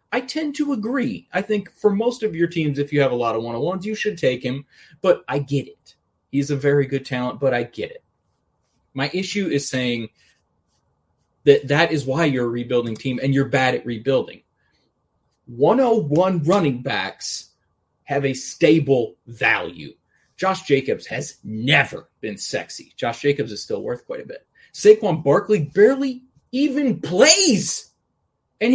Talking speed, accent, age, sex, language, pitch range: 165 wpm, American, 30-49, male, English, 145-215 Hz